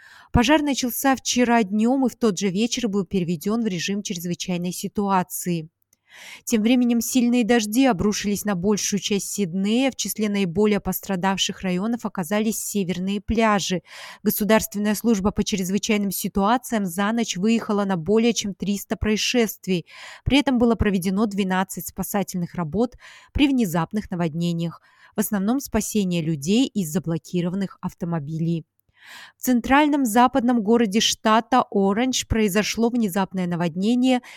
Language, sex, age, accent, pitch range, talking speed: Russian, female, 20-39, native, 185-230 Hz, 125 wpm